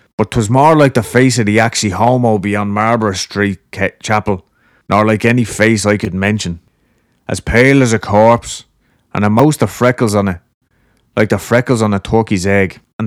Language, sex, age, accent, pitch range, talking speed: English, male, 30-49, Irish, 100-120 Hz, 195 wpm